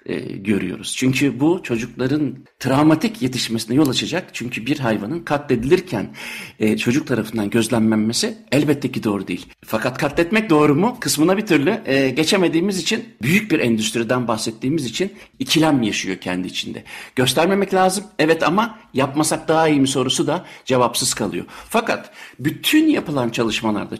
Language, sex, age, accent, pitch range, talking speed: Turkish, male, 60-79, native, 115-175 Hz, 140 wpm